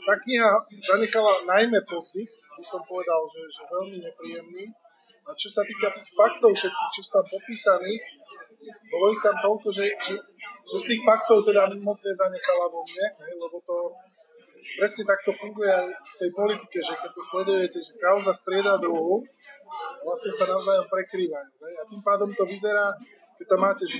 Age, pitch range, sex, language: 20-39, 180-220 Hz, male, Slovak